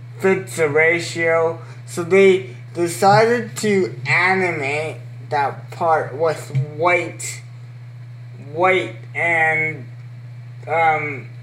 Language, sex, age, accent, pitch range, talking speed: English, male, 20-39, American, 120-180 Hz, 80 wpm